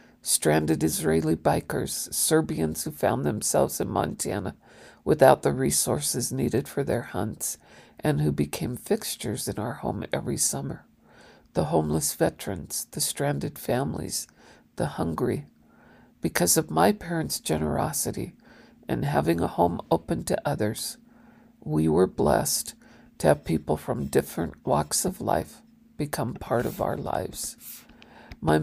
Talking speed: 130 wpm